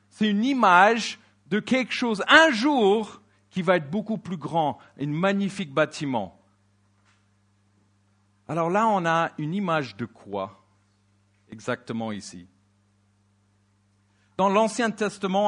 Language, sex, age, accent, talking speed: English, male, 50-69, French, 115 wpm